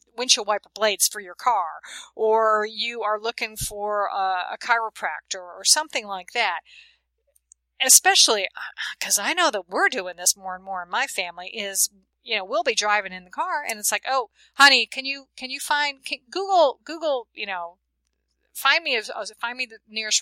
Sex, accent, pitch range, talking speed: female, American, 190-265 Hz, 180 wpm